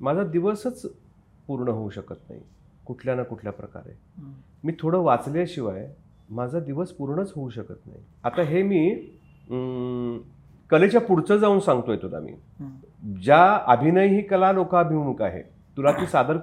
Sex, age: male, 40-59